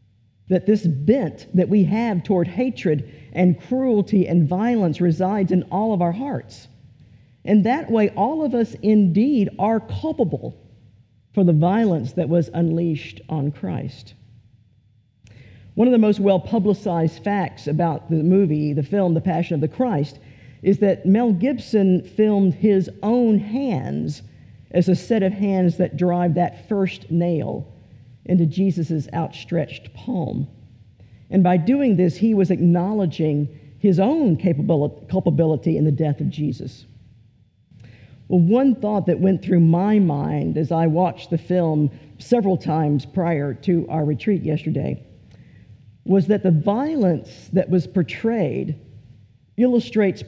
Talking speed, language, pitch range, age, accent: 140 wpm, English, 135-200 Hz, 50-69, American